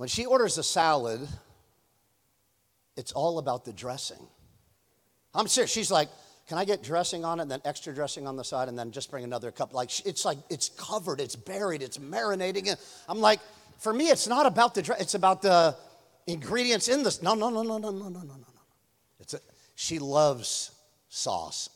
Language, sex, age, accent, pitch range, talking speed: English, male, 40-59, American, 140-195 Hz, 200 wpm